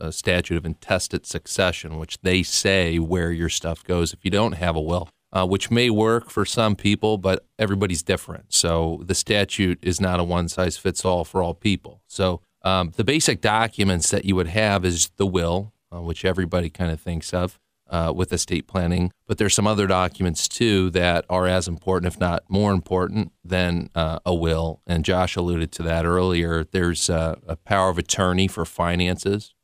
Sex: male